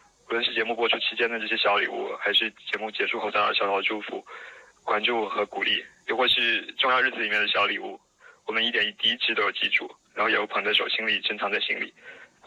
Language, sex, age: Chinese, male, 20-39